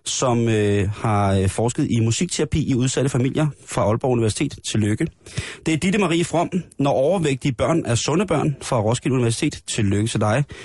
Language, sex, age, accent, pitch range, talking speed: Danish, male, 30-49, native, 115-155 Hz, 180 wpm